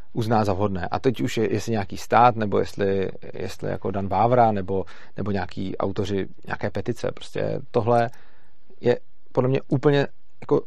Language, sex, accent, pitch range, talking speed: Czech, male, native, 110-130 Hz, 165 wpm